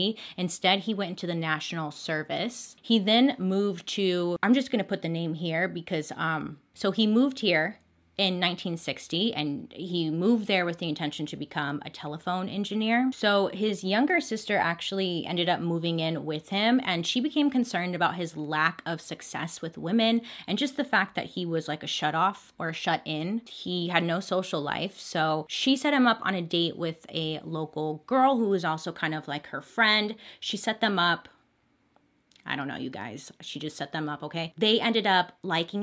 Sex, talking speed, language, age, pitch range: female, 200 wpm, English, 20-39, 155-200 Hz